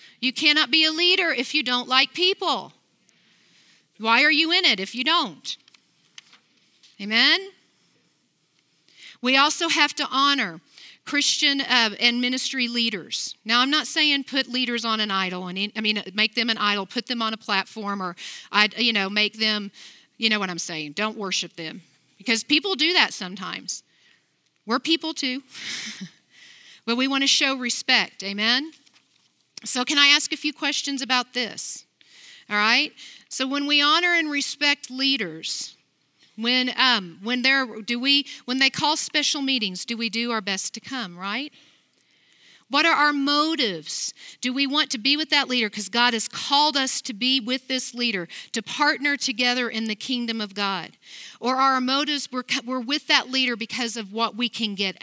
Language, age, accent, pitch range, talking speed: English, 50-69, American, 215-285 Hz, 175 wpm